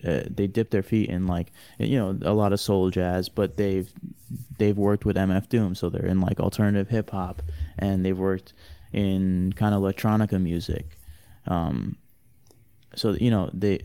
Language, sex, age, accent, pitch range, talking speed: English, male, 20-39, American, 90-105 Hz, 175 wpm